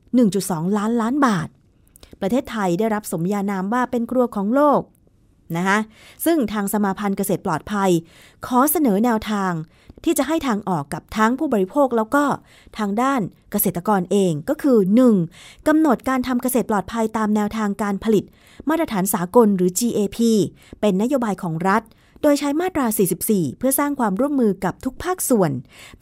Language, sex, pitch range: Thai, female, 190-250 Hz